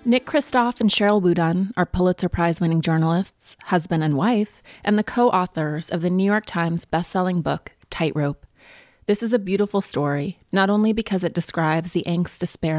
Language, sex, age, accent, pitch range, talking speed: English, female, 30-49, American, 160-185 Hz, 170 wpm